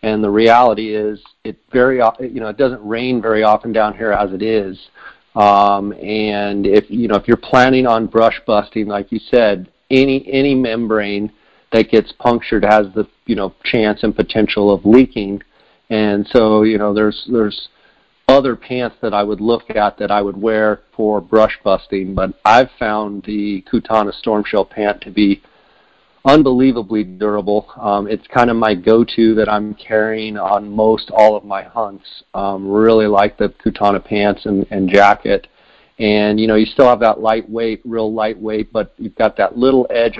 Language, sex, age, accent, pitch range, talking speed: English, male, 50-69, American, 105-115 Hz, 175 wpm